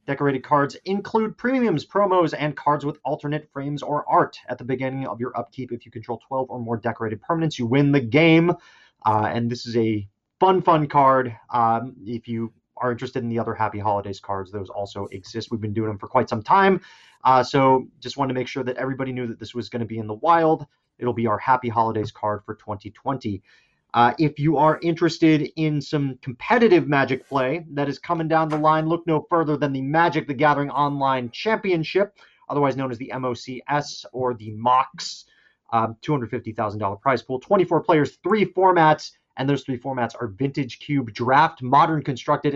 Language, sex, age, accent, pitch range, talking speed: English, male, 30-49, American, 120-155 Hz, 195 wpm